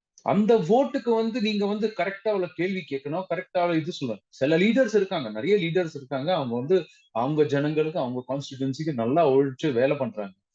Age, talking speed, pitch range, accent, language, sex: 30-49, 165 wpm, 135-185 Hz, native, Tamil, male